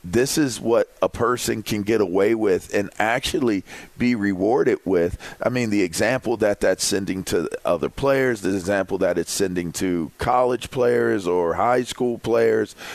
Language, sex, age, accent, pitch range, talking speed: English, male, 40-59, American, 100-125 Hz, 165 wpm